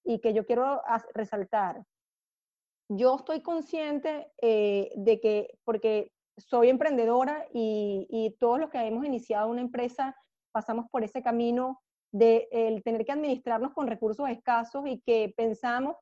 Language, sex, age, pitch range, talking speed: Spanish, female, 30-49, 225-265 Hz, 145 wpm